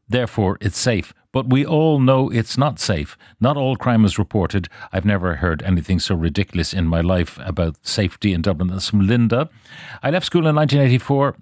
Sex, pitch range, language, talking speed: male, 95-125 Hz, English, 190 wpm